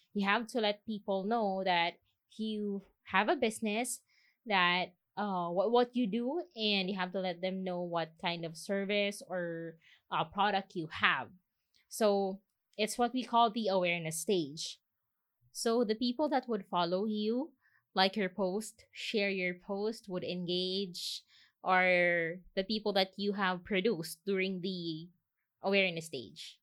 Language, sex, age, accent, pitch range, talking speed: English, female, 20-39, Filipino, 170-220 Hz, 150 wpm